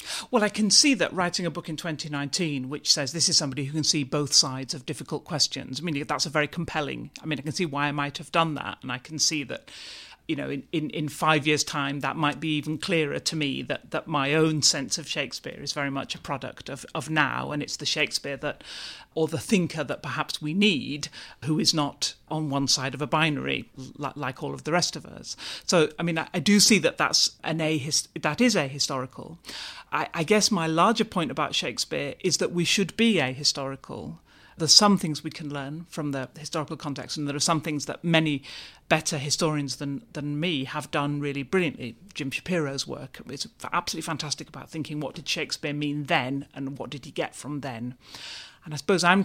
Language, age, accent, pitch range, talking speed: English, 40-59, British, 145-170 Hz, 220 wpm